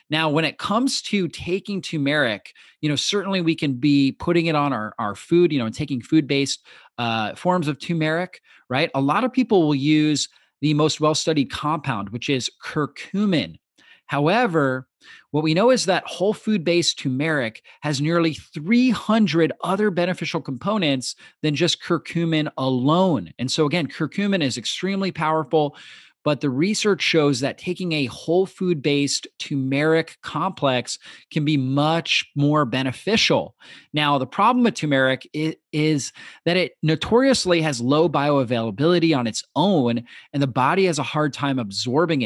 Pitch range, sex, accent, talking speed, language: 140-175 Hz, male, American, 150 wpm, English